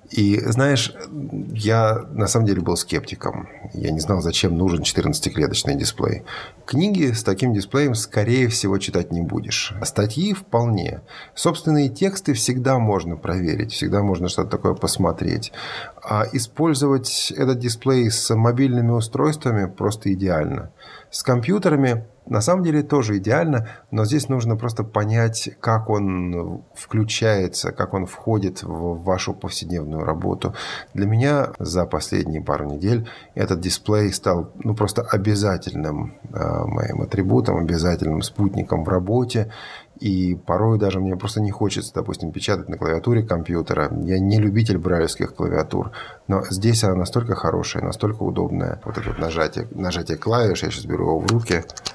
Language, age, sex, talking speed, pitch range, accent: Russian, 30-49, male, 140 wpm, 95-120 Hz, native